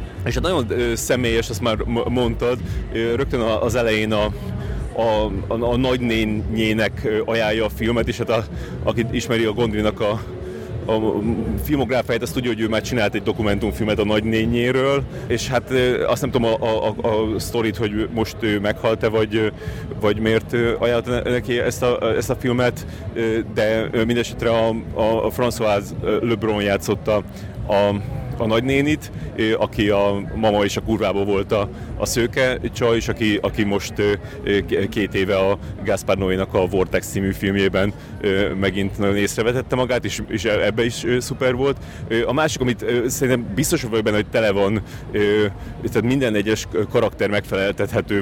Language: Hungarian